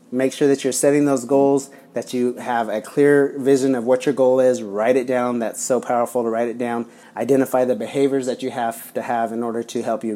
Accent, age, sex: American, 30-49, male